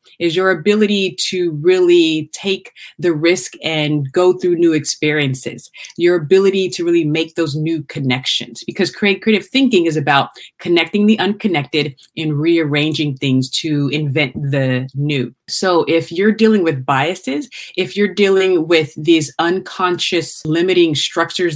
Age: 30-49